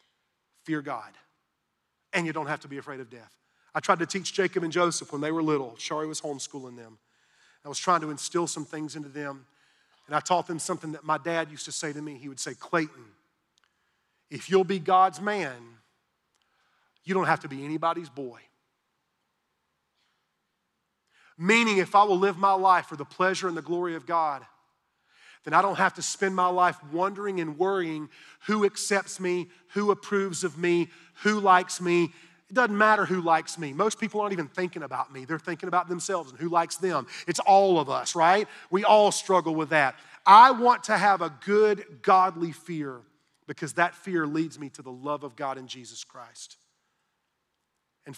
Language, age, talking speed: English, 40-59, 190 wpm